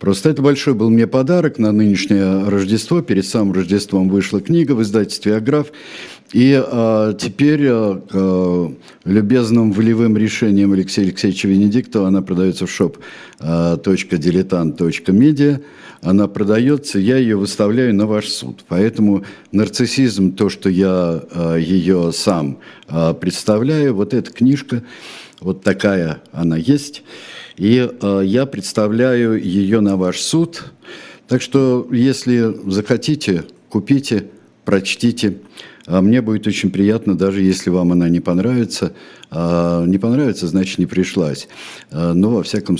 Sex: male